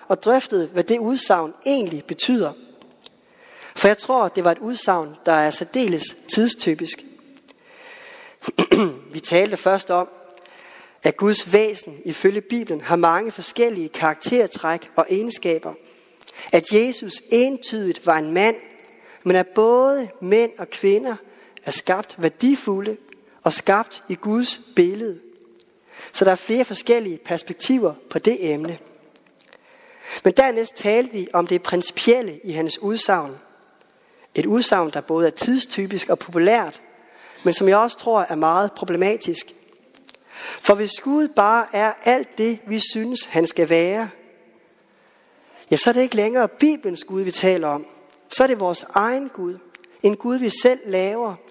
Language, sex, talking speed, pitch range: Danish, male, 140 wpm, 180-245 Hz